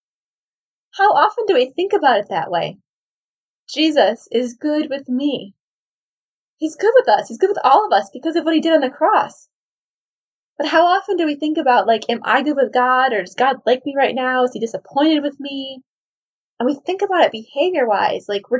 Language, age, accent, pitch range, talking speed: English, 20-39, American, 245-300 Hz, 210 wpm